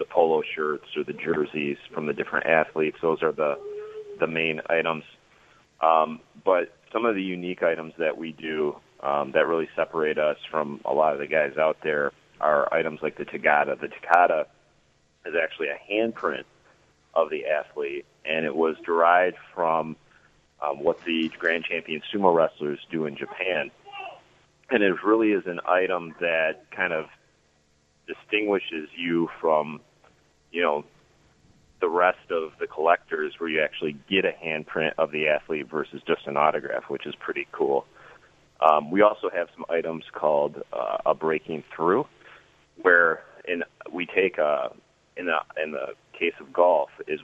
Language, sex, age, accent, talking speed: English, male, 30-49, American, 165 wpm